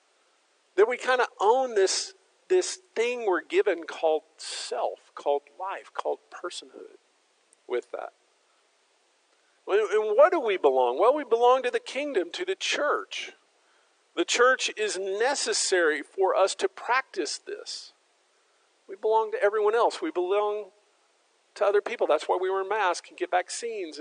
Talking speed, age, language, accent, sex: 145 wpm, 50-69, English, American, male